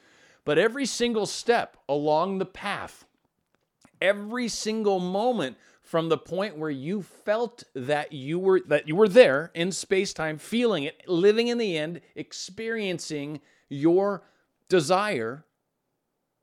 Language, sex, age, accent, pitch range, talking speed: English, male, 40-59, American, 135-195 Hz, 125 wpm